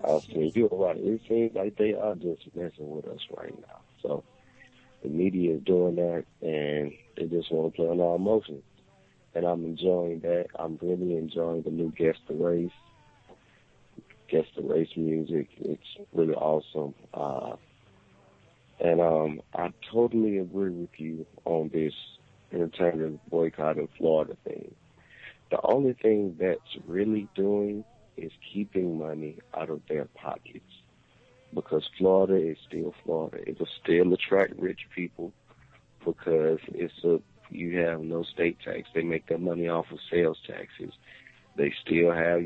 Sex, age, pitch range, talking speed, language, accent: male, 50-69, 80-90 Hz, 150 wpm, English, American